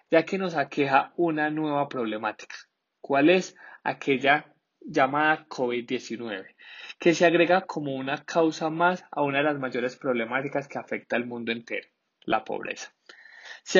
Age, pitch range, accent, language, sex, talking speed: 20-39, 130-160 Hz, Colombian, Spanish, male, 145 wpm